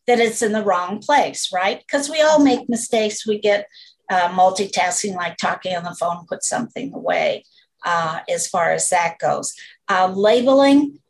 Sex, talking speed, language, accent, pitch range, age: female, 175 wpm, English, American, 185-240 Hz, 50-69